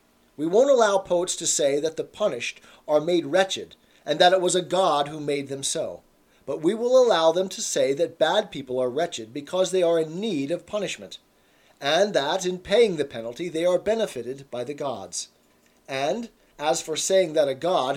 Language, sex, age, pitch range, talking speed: English, male, 40-59, 145-200 Hz, 200 wpm